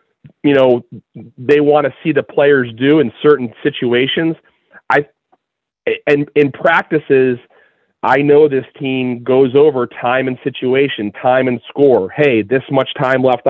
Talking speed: 145 wpm